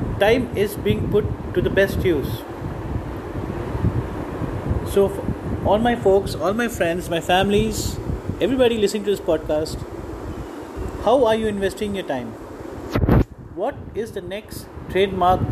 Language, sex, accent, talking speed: English, male, Indian, 130 wpm